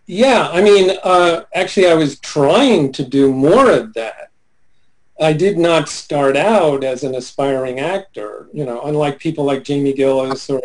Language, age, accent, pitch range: English, 40-59, American, 130-155 Hz